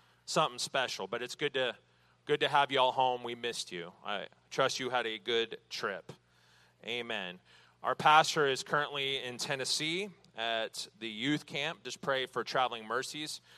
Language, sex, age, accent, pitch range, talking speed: English, male, 30-49, American, 120-145 Hz, 170 wpm